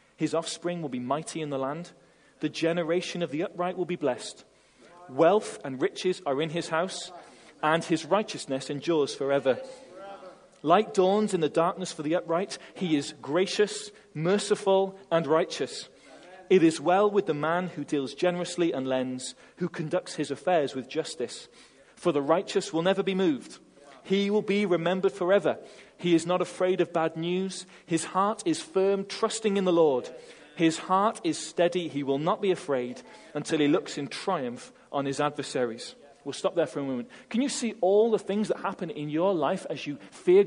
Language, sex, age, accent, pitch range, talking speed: English, male, 30-49, British, 160-210 Hz, 180 wpm